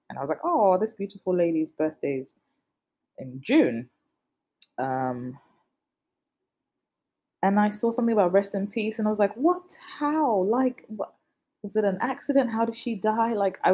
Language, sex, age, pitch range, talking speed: English, female, 20-39, 155-225 Hz, 165 wpm